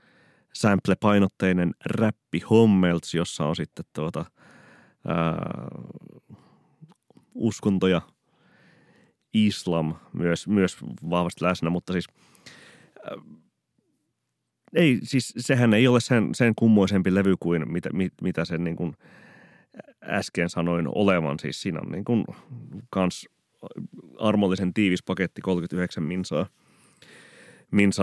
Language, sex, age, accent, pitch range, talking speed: Finnish, male, 30-49, native, 85-100 Hz, 105 wpm